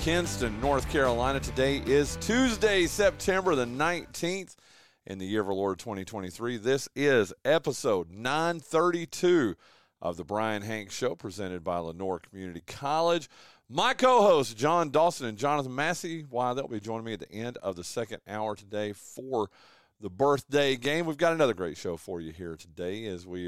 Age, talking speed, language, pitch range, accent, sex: 40-59, 165 wpm, English, 105-170 Hz, American, male